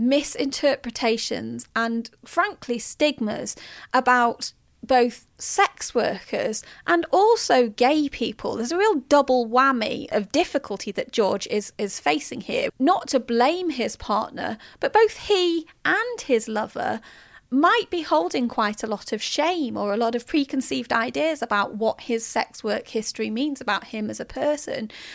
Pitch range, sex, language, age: 230-315 Hz, female, English, 30-49